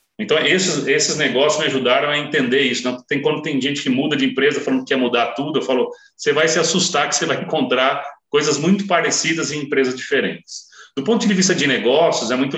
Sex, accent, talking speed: male, Brazilian, 220 wpm